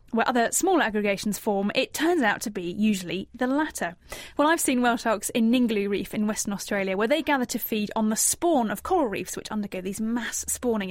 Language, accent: English, British